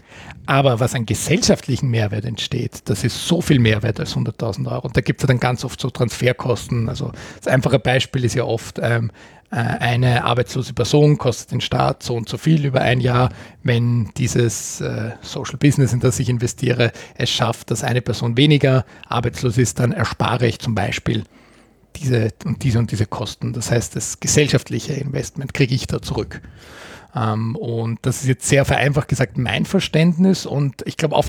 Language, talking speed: German, 180 wpm